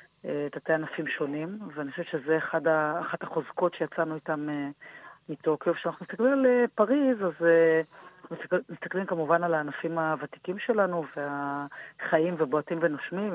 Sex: female